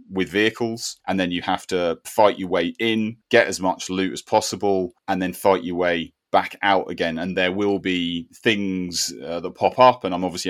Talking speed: 210 wpm